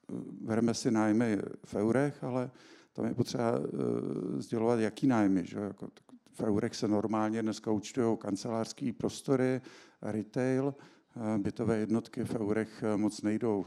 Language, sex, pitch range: Czech, male, 105-125 Hz